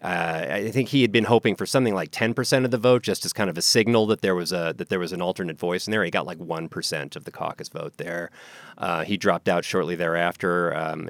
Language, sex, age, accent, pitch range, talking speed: English, male, 30-49, American, 90-120 Hz, 270 wpm